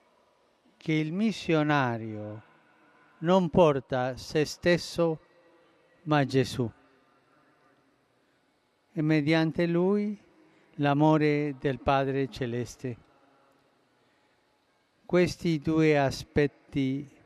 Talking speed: 65 wpm